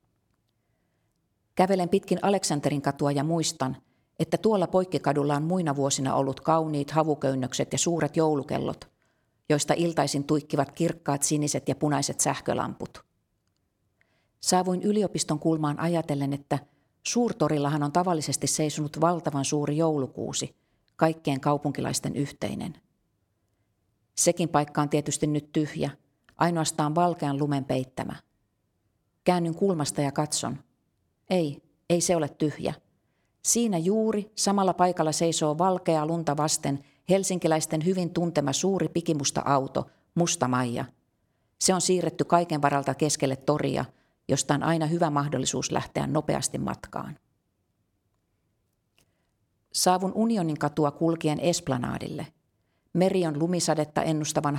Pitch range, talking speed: 135-165 Hz, 110 wpm